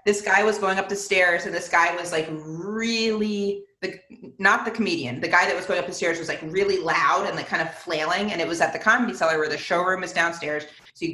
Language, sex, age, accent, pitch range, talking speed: English, female, 30-49, American, 170-230 Hz, 260 wpm